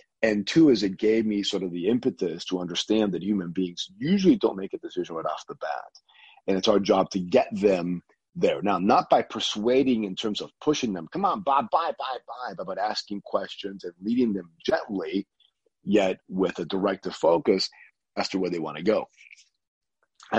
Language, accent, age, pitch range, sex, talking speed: English, American, 40-59, 95-125 Hz, male, 195 wpm